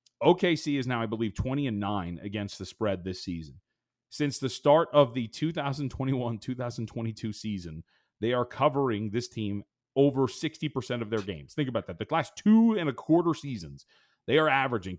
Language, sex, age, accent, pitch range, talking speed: English, male, 30-49, American, 110-140 Hz, 180 wpm